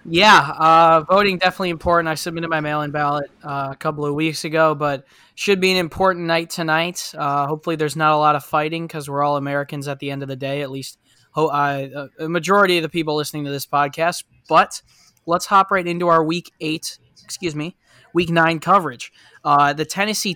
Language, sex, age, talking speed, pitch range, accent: English, male, 20-39, 205 wpm, 145-165 Hz, American